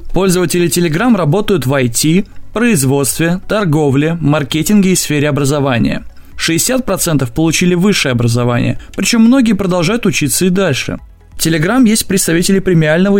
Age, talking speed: 20-39, 120 wpm